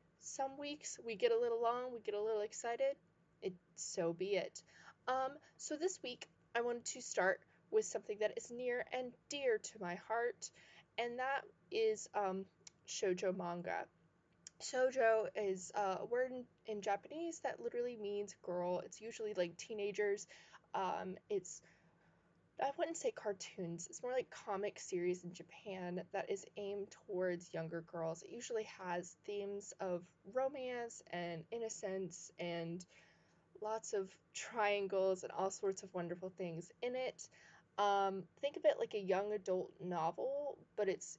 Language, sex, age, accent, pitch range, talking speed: English, female, 20-39, American, 180-250 Hz, 155 wpm